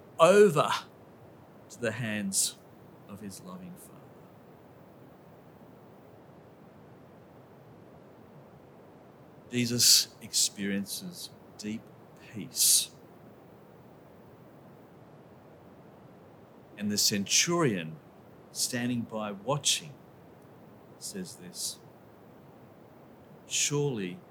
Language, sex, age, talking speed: English, male, 40-59, 50 wpm